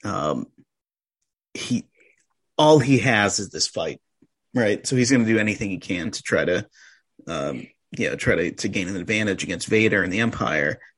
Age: 30-49